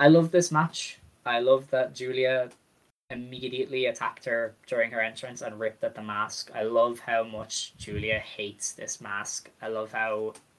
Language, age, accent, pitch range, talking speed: English, 10-29, Irish, 110-140 Hz, 170 wpm